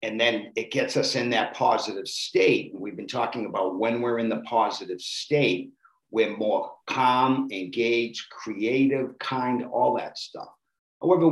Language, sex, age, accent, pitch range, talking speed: English, male, 50-69, American, 115-145 Hz, 155 wpm